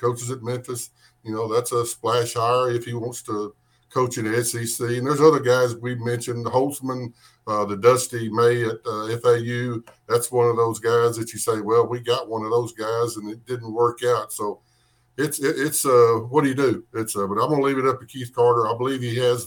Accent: American